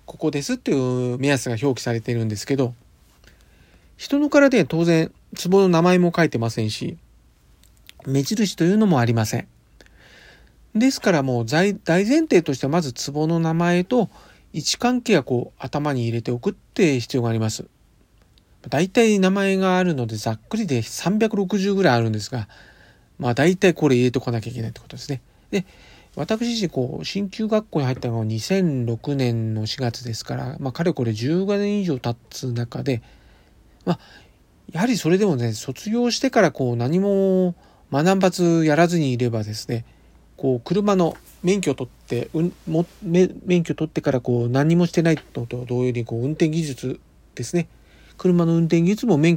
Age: 40-59